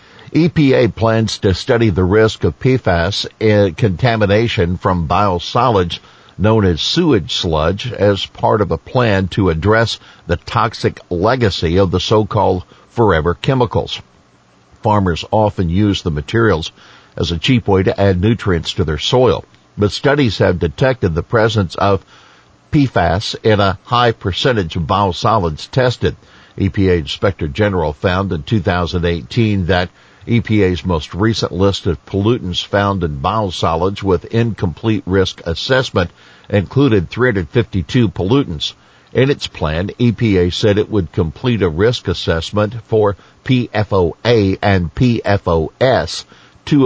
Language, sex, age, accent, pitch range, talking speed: English, male, 60-79, American, 90-115 Hz, 125 wpm